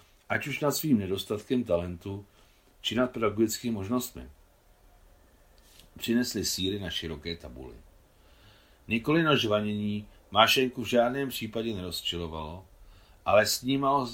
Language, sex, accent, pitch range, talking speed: Czech, male, native, 85-115 Hz, 110 wpm